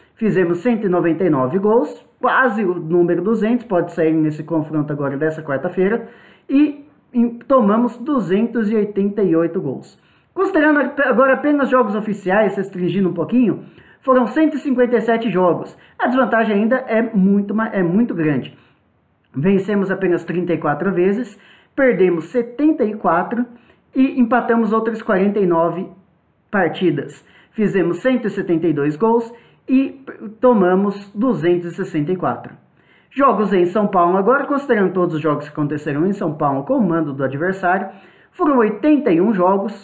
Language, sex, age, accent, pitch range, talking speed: Portuguese, male, 20-39, Brazilian, 175-235 Hz, 115 wpm